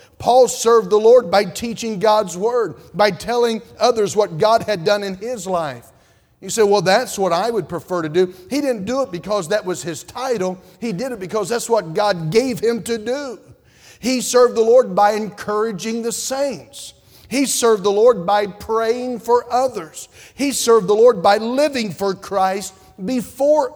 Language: English